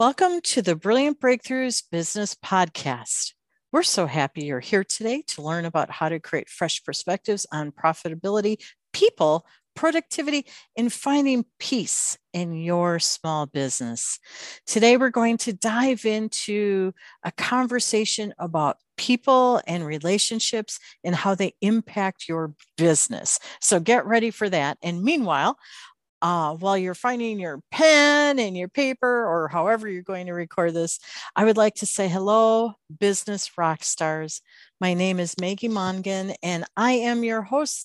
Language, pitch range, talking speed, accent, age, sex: English, 165-225 Hz, 145 wpm, American, 50-69, female